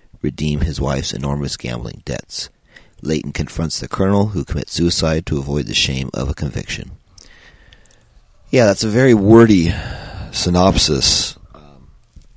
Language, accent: English, American